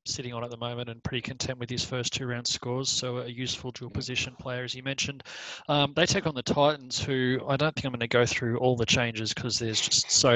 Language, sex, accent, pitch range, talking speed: English, male, Australian, 120-135 Hz, 260 wpm